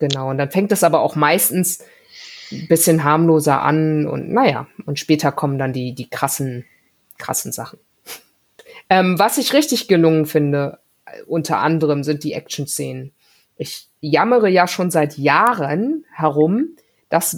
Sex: female